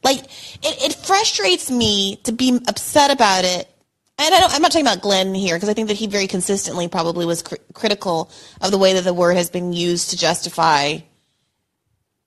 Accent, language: American, English